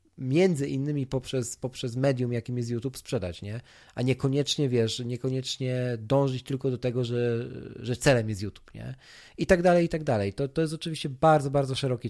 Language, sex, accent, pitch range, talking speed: Polish, male, native, 115-140 Hz, 185 wpm